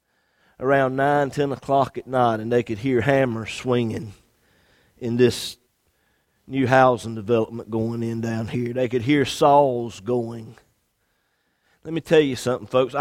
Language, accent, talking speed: English, American, 150 wpm